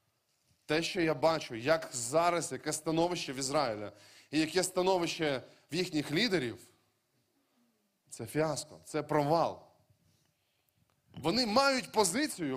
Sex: male